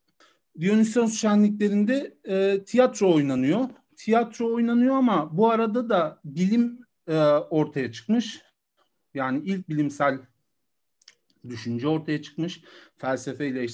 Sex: male